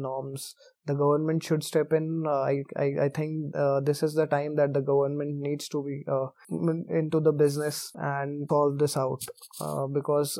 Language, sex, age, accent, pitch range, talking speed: English, male, 20-39, Indian, 140-150 Hz, 185 wpm